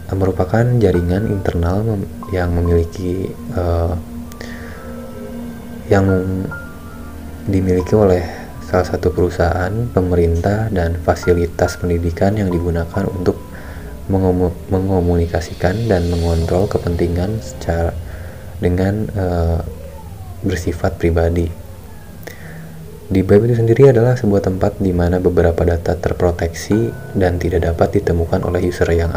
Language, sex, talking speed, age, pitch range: Indonesian, male, 100 wpm, 20-39, 85-95 Hz